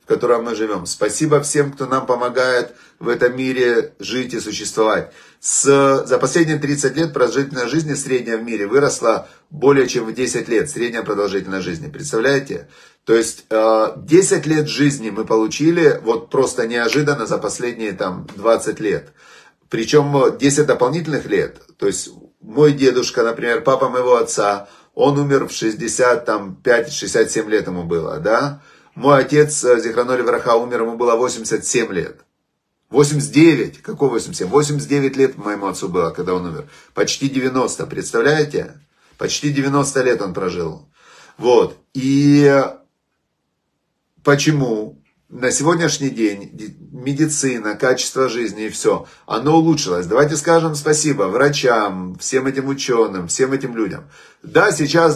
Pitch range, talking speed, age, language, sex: 115-150 Hz, 135 wpm, 30-49, Russian, male